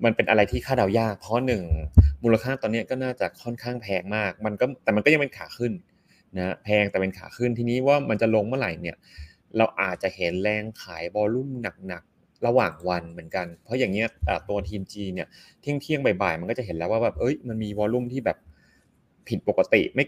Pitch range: 95-120 Hz